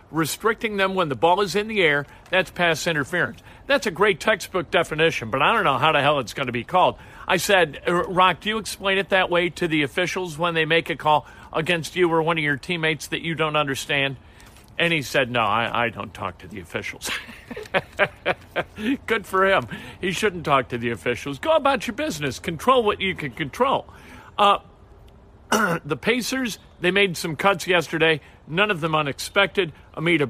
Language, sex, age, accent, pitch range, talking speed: English, male, 50-69, American, 130-180 Hz, 195 wpm